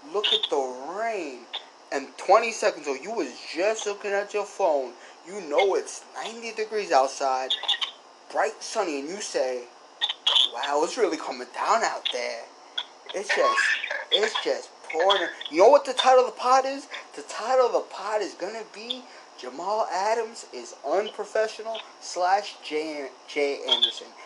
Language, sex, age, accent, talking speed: English, male, 20-39, American, 155 wpm